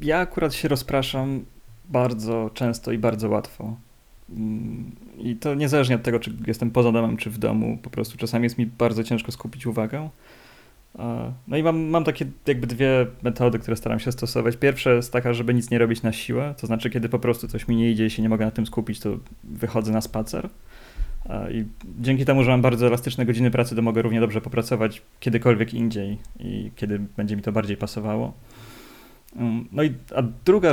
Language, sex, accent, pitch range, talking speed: Polish, male, native, 110-125 Hz, 190 wpm